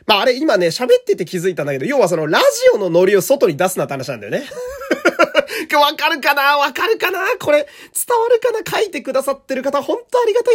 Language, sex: Japanese, male